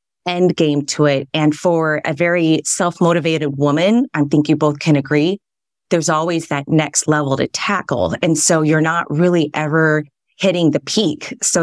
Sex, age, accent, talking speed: female, 30-49, American, 175 wpm